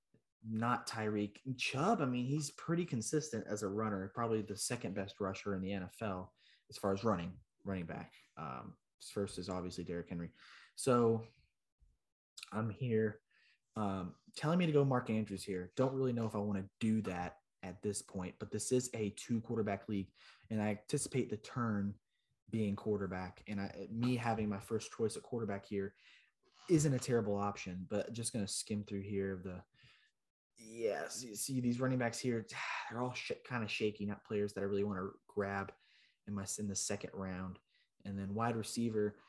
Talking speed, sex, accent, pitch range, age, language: 185 wpm, male, American, 100-115 Hz, 20-39, English